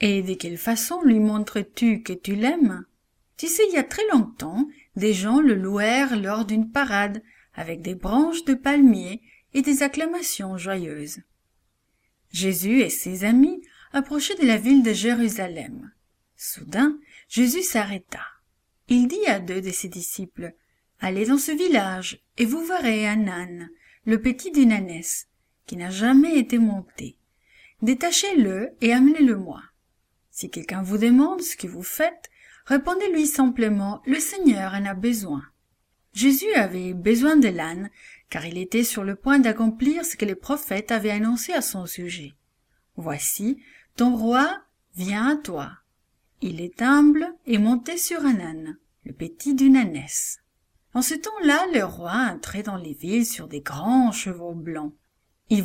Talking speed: 160 wpm